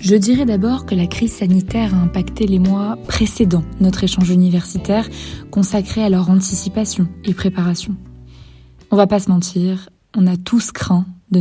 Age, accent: 20-39, French